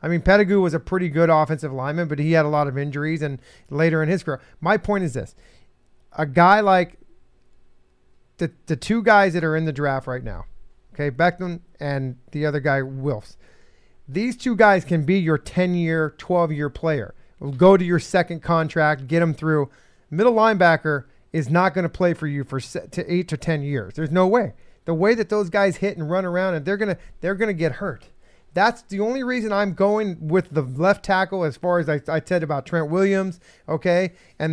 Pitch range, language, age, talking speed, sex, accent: 150-195 Hz, English, 40-59, 205 wpm, male, American